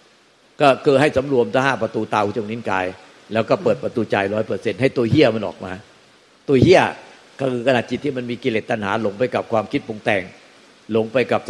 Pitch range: 110-145 Hz